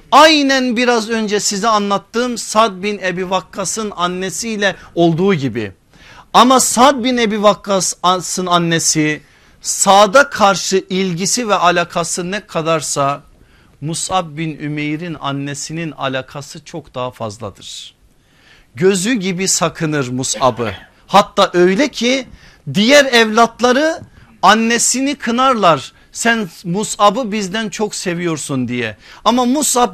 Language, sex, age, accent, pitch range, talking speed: Turkish, male, 50-69, native, 170-225 Hz, 105 wpm